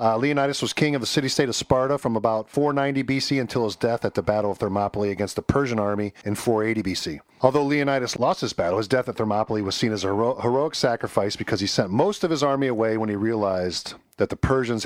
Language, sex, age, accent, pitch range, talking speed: English, male, 40-59, American, 100-130 Hz, 230 wpm